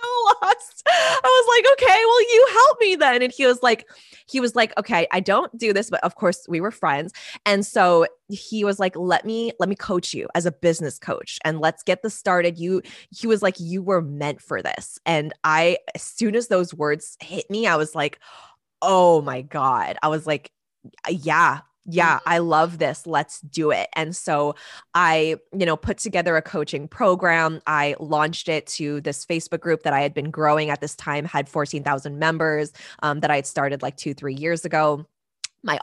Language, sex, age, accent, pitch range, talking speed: English, female, 20-39, American, 150-185 Hz, 205 wpm